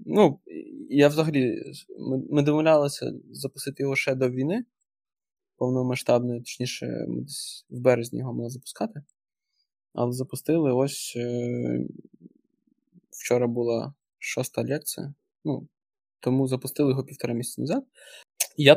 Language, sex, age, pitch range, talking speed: Ukrainian, male, 20-39, 125-150 Hz, 120 wpm